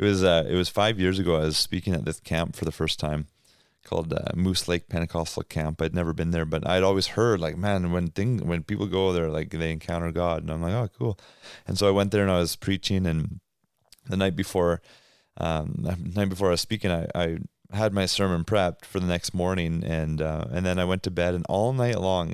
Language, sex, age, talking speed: English, male, 30-49, 245 wpm